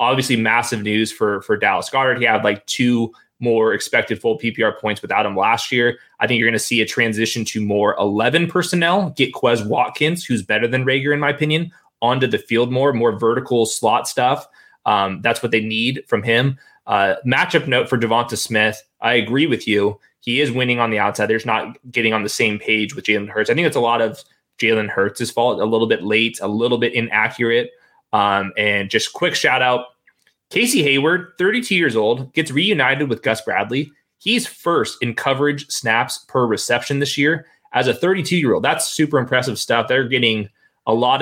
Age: 20-39